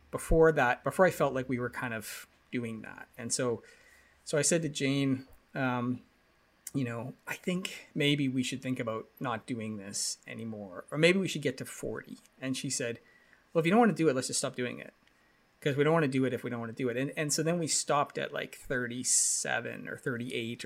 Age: 30-49